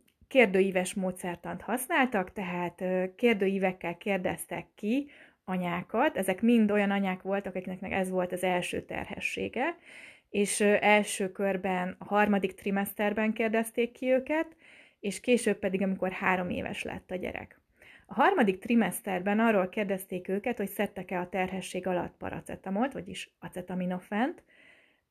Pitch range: 185-230 Hz